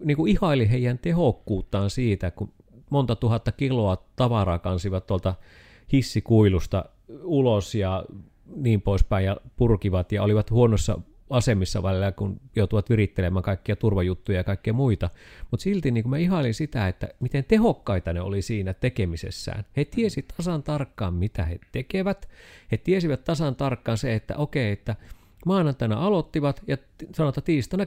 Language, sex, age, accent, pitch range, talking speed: Finnish, male, 30-49, native, 95-135 Hz, 140 wpm